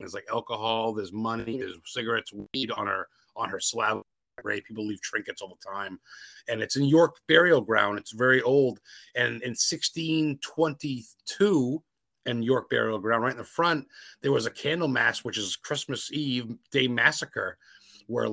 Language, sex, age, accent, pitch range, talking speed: English, male, 30-49, American, 115-145 Hz, 170 wpm